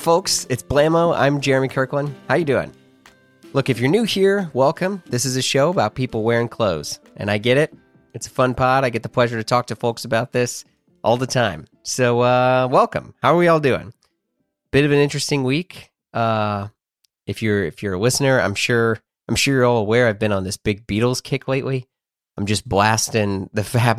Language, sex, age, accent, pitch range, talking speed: English, male, 30-49, American, 100-135 Hz, 210 wpm